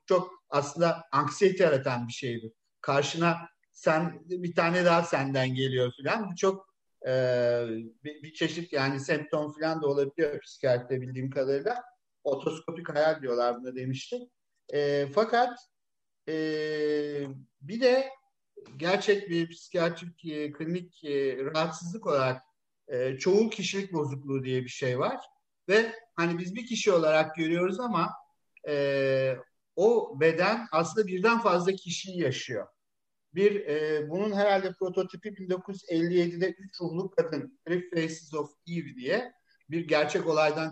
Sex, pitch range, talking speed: male, 140-195 Hz, 125 wpm